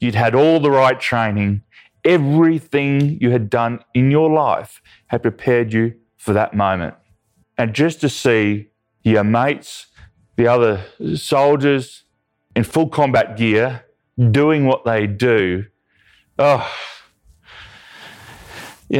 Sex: male